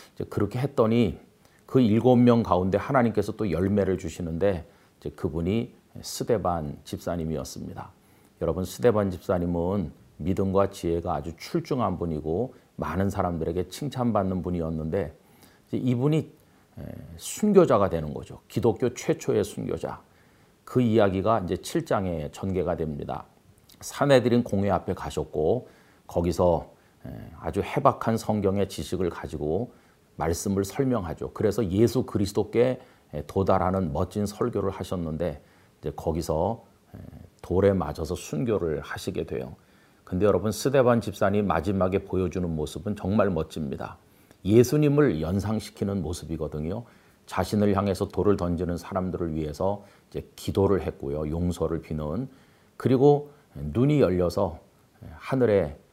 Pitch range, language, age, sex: 85-105 Hz, Korean, 40-59, male